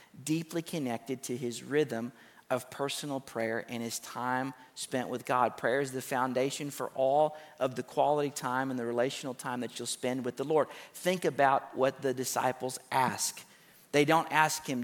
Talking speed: 180 wpm